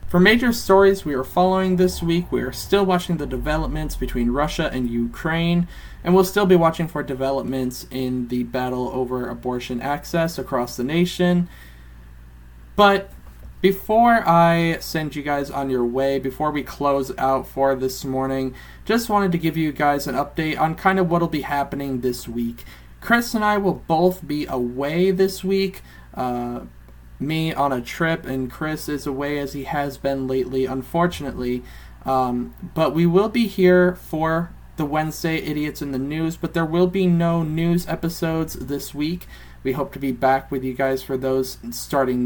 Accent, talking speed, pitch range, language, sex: American, 175 wpm, 130-170 Hz, English, male